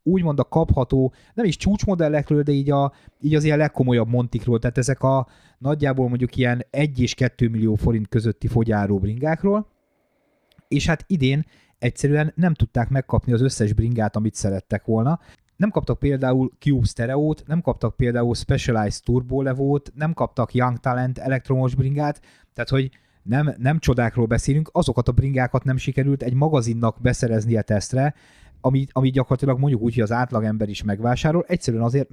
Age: 30-49